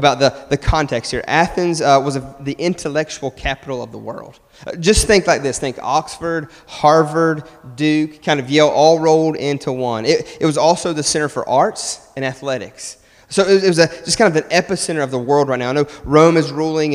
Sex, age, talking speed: male, 30-49, 215 wpm